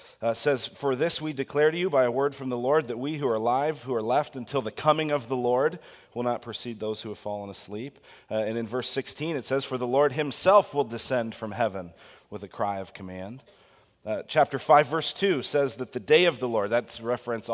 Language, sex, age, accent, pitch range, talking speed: English, male, 30-49, American, 115-145 Hz, 240 wpm